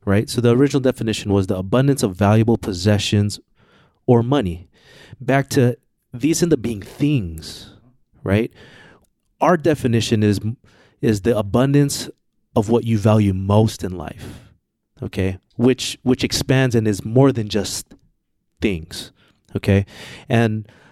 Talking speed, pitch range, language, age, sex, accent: 130 wpm, 105-135 Hz, English, 30-49, male, American